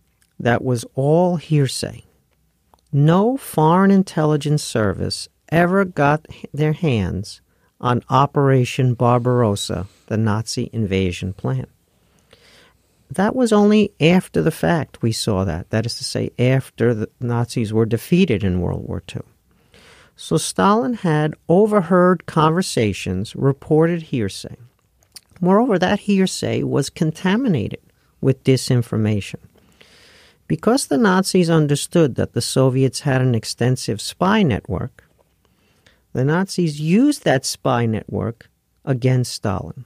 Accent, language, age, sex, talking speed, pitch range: American, English, 50-69, male, 115 wpm, 115-165 Hz